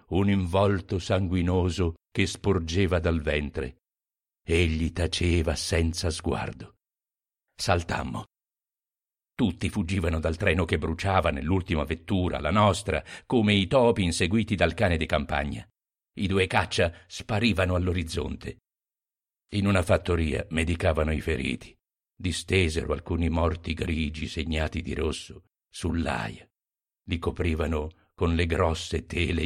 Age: 50-69